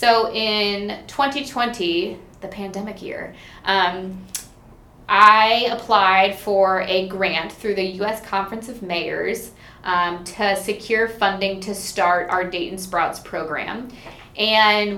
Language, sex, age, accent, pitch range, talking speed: English, female, 20-39, American, 185-220 Hz, 115 wpm